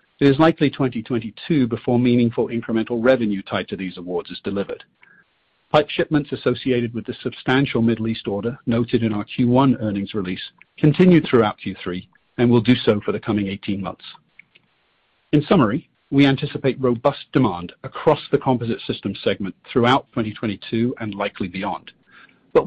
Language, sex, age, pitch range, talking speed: English, male, 40-59, 115-140 Hz, 155 wpm